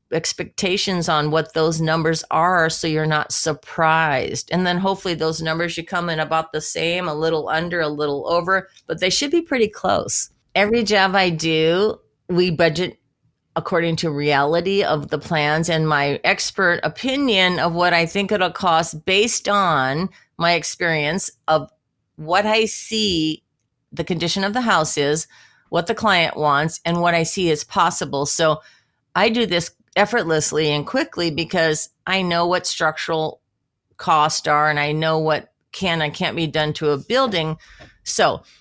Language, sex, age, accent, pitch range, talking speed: English, female, 40-59, American, 155-195 Hz, 165 wpm